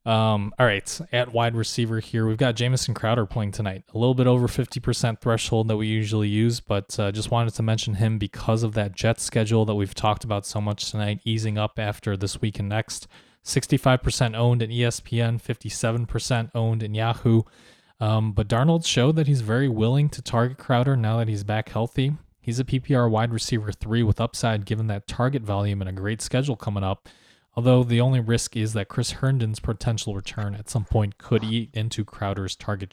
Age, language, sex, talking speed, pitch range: 20-39, English, male, 200 wpm, 105-125 Hz